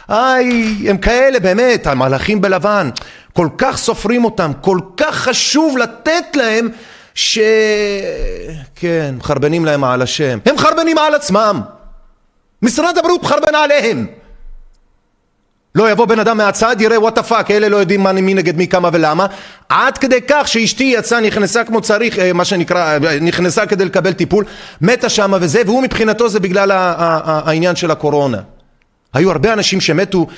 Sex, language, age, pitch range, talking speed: male, Hebrew, 30-49, 160-225 Hz, 140 wpm